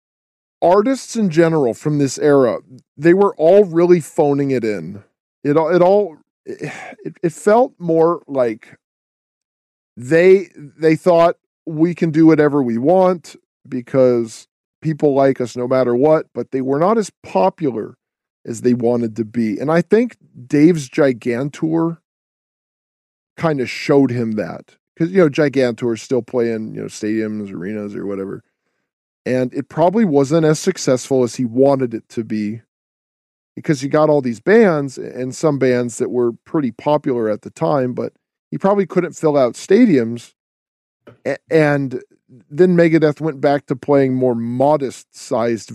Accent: American